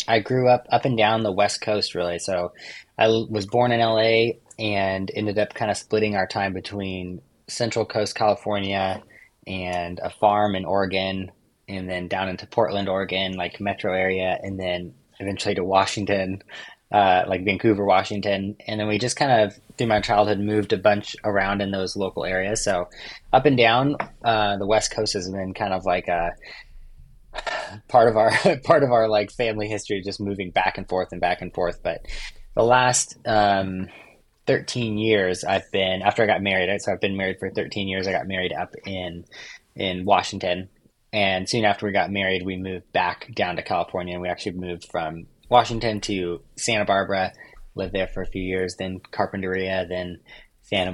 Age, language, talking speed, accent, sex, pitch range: 20-39, English, 185 wpm, American, male, 95-105 Hz